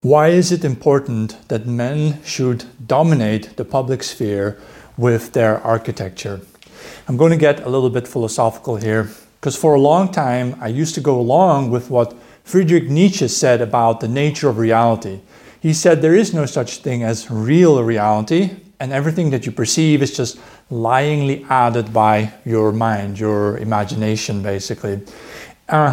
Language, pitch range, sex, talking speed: English, 115-155 Hz, male, 160 wpm